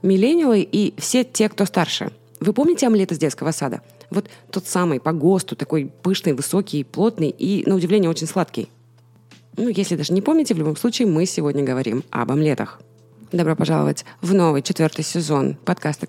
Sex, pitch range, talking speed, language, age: female, 155-220 Hz, 170 wpm, Russian, 20-39